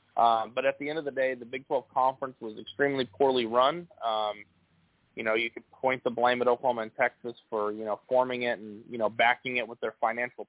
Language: English